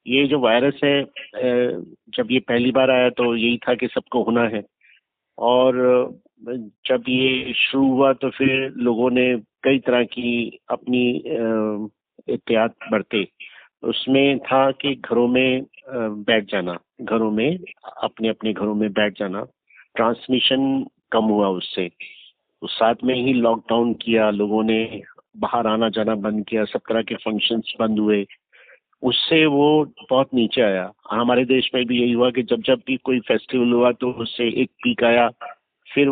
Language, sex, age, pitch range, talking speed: Hindi, male, 50-69, 115-135 Hz, 155 wpm